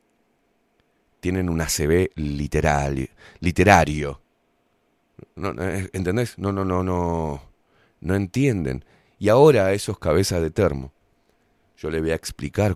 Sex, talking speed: male, 110 wpm